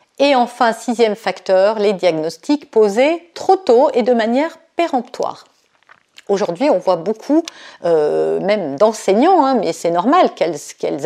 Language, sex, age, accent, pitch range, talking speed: French, female, 50-69, French, 205-310 Hz, 140 wpm